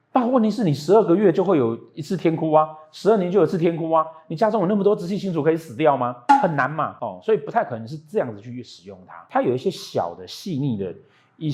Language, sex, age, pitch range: Chinese, male, 30-49, 115-170 Hz